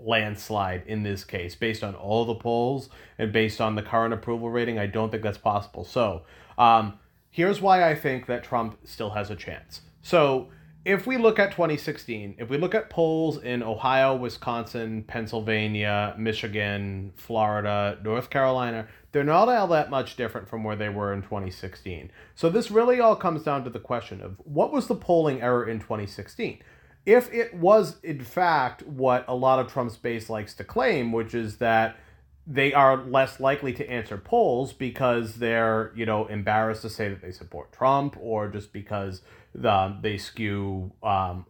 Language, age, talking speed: English, 30-49, 180 wpm